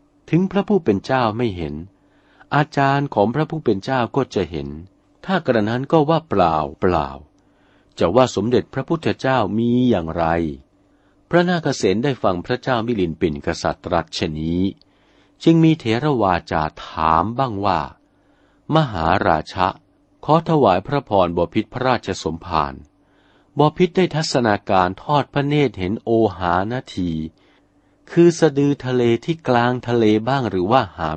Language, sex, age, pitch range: Thai, male, 60-79, 95-140 Hz